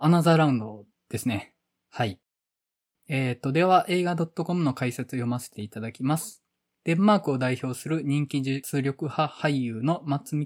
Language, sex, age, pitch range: Japanese, male, 20-39, 125-150 Hz